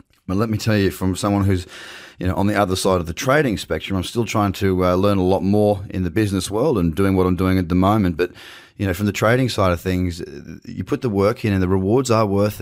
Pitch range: 85-105 Hz